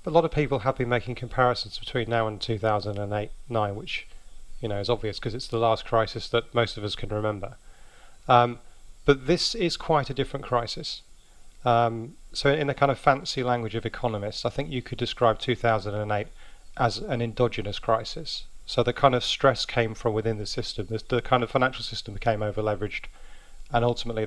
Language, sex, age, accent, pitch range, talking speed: English, male, 30-49, British, 110-130 Hz, 195 wpm